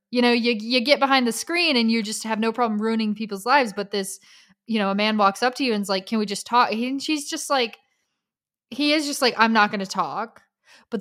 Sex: female